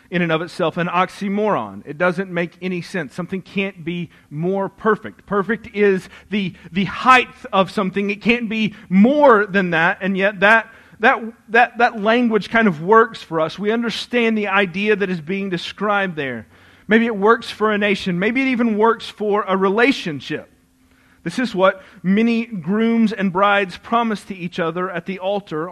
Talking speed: 180 wpm